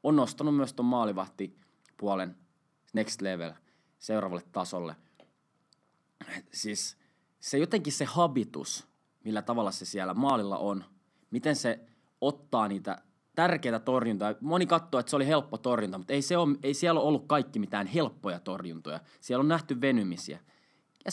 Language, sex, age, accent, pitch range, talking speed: Finnish, male, 20-39, native, 100-145 Hz, 140 wpm